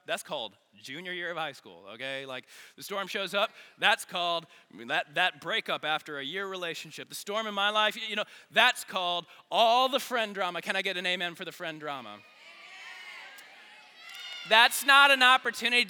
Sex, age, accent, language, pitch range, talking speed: male, 20-39, American, English, 175-220 Hz, 190 wpm